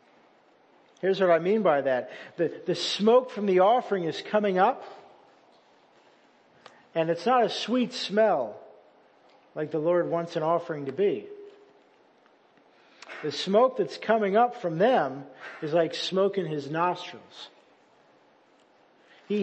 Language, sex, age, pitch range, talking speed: English, male, 50-69, 190-270 Hz, 135 wpm